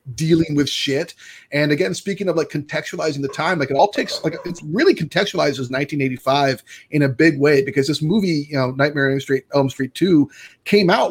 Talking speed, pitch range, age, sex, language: 195 wpm, 135-170 Hz, 30-49, male, English